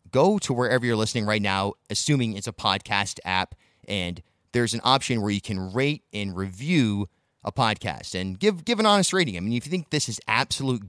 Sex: male